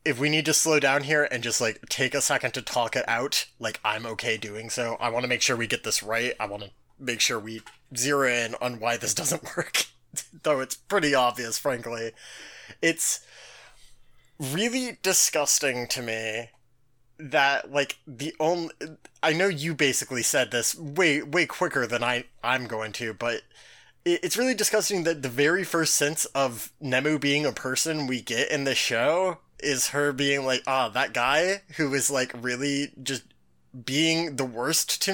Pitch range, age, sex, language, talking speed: 120-175 Hz, 20-39, male, English, 185 wpm